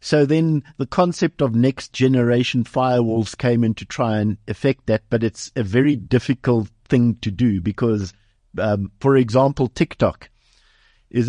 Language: English